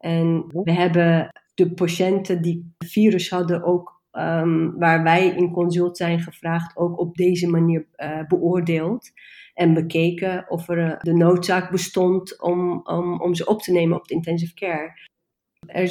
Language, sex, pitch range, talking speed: English, female, 165-180 Hz, 155 wpm